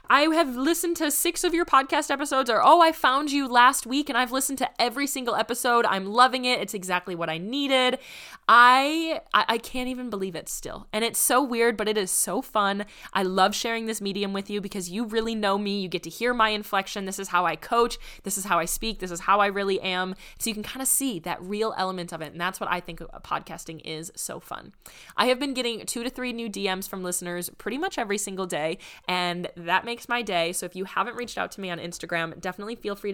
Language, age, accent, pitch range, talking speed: English, 20-39, American, 175-240 Hz, 250 wpm